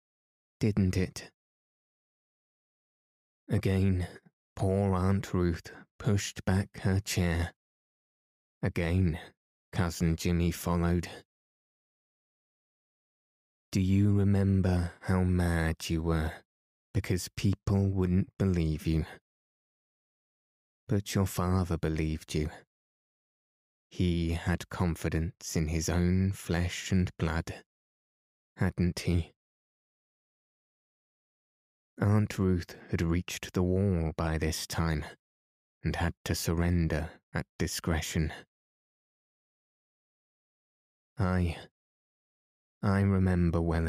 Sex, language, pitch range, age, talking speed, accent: male, English, 80-95 Hz, 20-39, 85 wpm, British